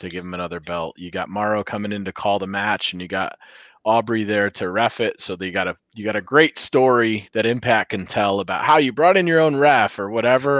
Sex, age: male, 20-39